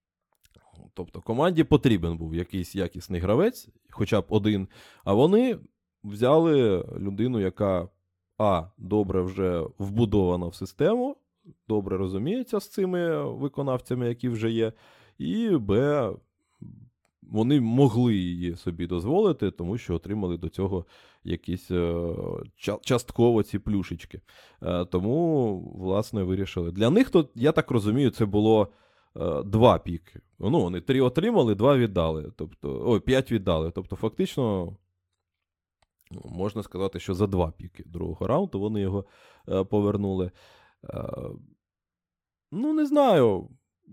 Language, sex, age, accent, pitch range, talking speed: Ukrainian, male, 20-39, native, 90-125 Hz, 115 wpm